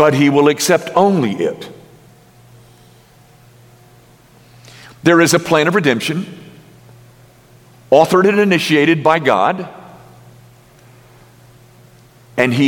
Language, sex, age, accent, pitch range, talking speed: English, male, 50-69, American, 125-195 Hz, 90 wpm